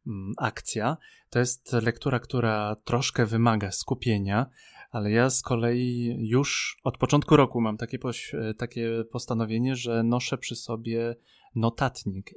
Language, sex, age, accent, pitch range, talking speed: Polish, male, 20-39, native, 115-150 Hz, 120 wpm